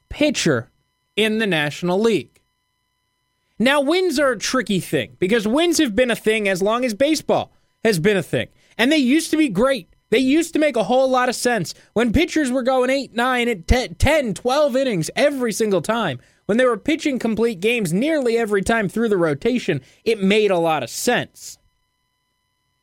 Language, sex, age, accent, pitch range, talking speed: English, male, 20-39, American, 150-250 Hz, 190 wpm